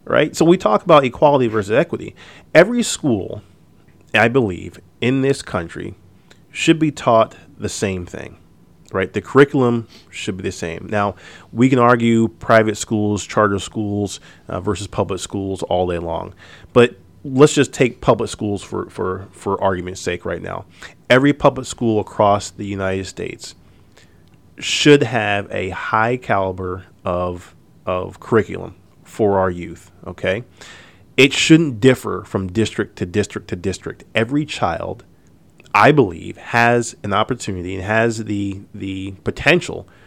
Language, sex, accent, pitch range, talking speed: English, male, American, 95-120 Hz, 145 wpm